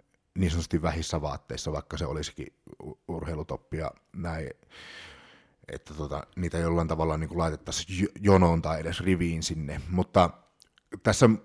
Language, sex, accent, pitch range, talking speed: Finnish, male, native, 80-95 Hz, 115 wpm